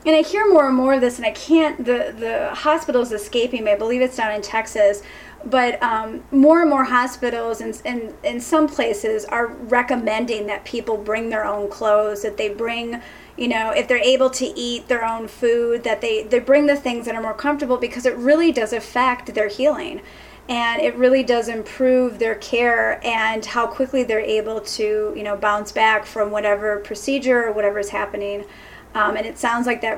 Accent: American